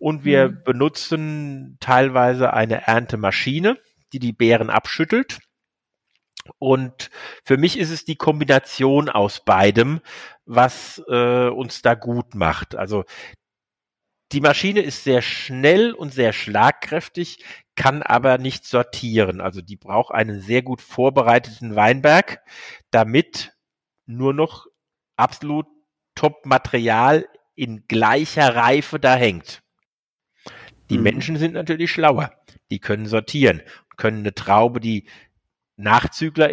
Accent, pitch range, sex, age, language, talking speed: German, 120-160 Hz, male, 50-69, German, 115 wpm